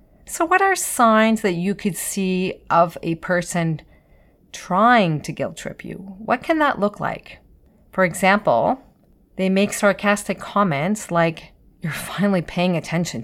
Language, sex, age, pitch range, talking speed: English, female, 30-49, 165-220 Hz, 145 wpm